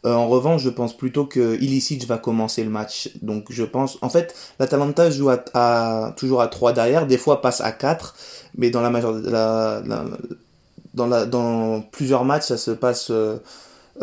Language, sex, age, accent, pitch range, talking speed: French, male, 20-39, French, 110-130 Hz, 195 wpm